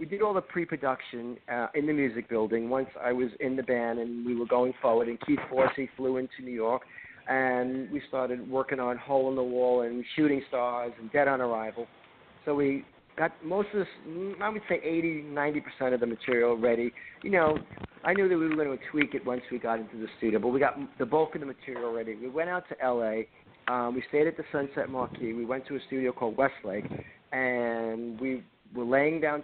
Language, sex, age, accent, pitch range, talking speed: English, male, 50-69, American, 120-155 Hz, 220 wpm